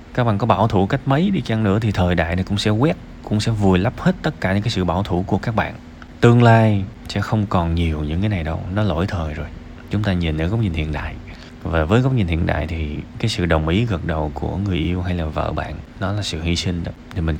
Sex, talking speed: male, 285 wpm